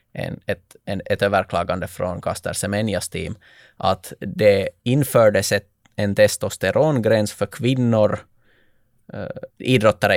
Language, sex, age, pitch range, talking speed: Swedish, male, 20-39, 100-120 Hz, 110 wpm